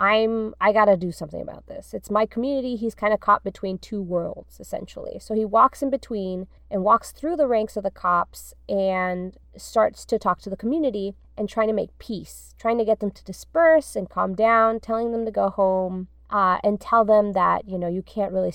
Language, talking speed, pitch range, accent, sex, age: English, 215 wpm, 195-245 Hz, American, female, 20-39